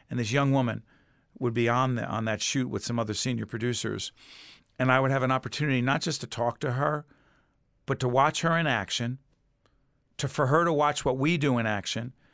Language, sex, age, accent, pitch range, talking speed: English, male, 50-69, American, 120-155 Hz, 215 wpm